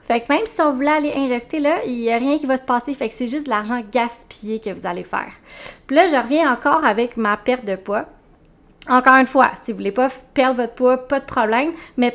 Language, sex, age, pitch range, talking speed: French, female, 20-39, 220-270 Hz, 260 wpm